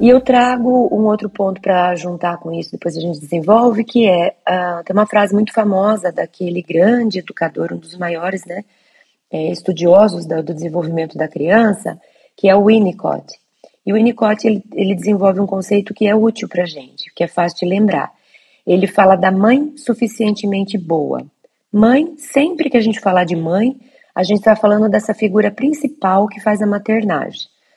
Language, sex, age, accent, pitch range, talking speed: Portuguese, female, 30-49, Brazilian, 180-225 Hz, 175 wpm